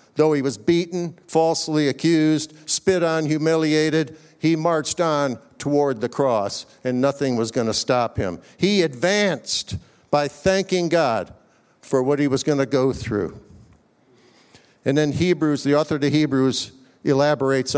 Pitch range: 125-165 Hz